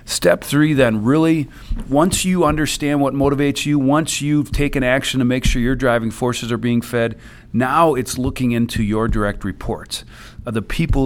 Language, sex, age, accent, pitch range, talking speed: English, male, 40-59, American, 105-135 Hz, 180 wpm